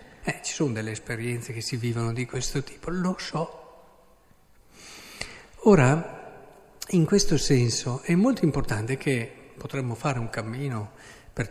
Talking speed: 135 wpm